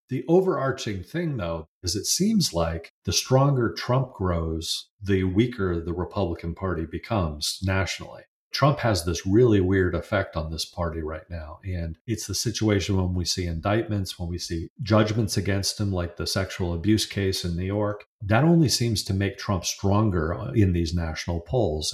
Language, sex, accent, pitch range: English, male, American, 85-105 Hz